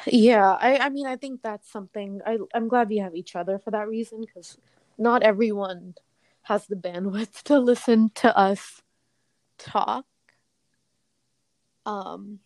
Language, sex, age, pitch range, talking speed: English, female, 20-39, 180-210 Hz, 140 wpm